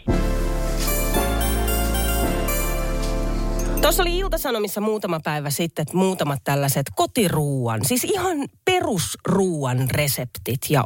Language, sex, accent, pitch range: Finnish, female, native, 135-210 Hz